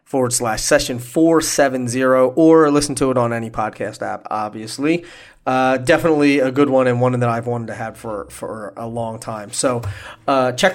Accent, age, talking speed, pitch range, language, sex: American, 30-49, 185 wpm, 115-145 Hz, English, male